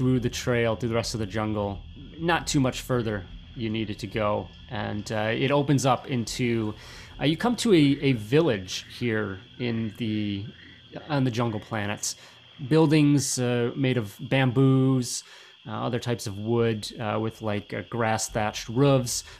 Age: 30-49